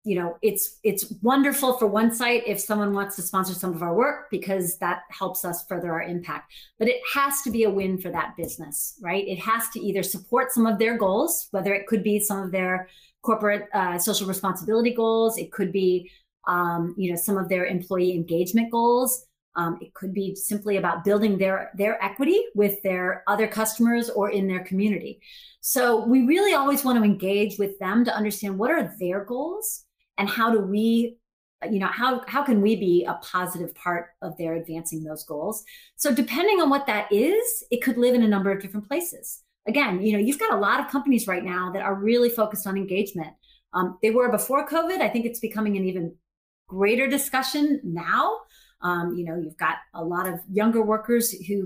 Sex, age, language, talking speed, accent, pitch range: female, 30-49, English, 205 wpm, American, 185-235 Hz